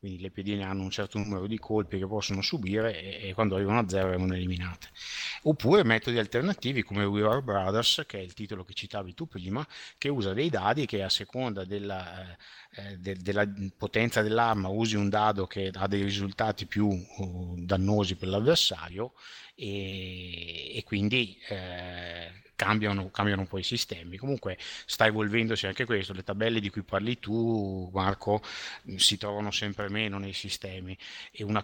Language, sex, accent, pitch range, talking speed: Italian, male, native, 95-110 Hz, 170 wpm